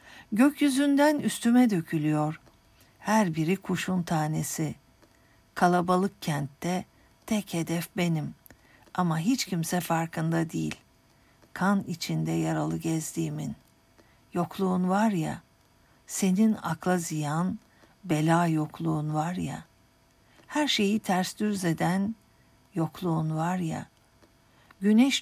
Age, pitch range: 60-79, 160-195 Hz